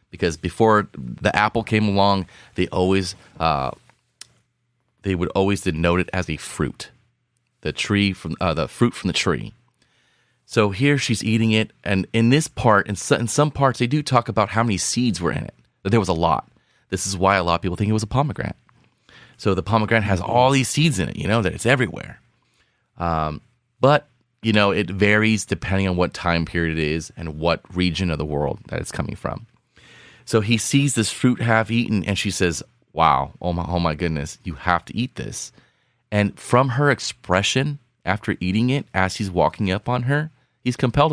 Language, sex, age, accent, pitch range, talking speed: English, male, 30-49, American, 95-125 Hz, 205 wpm